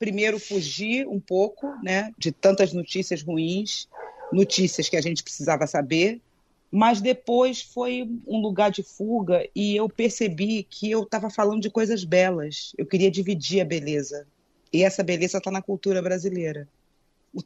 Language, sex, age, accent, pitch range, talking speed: Portuguese, female, 40-59, Brazilian, 165-205 Hz, 155 wpm